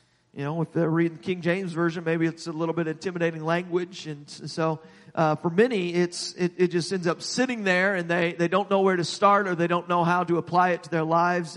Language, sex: English, male